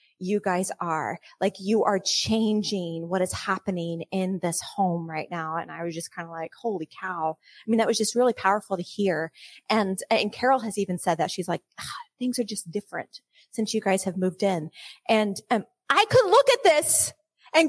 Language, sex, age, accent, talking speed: English, female, 30-49, American, 205 wpm